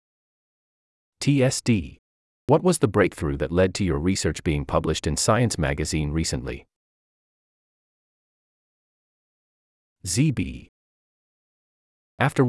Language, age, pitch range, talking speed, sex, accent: English, 30-49, 75-125 Hz, 85 wpm, male, American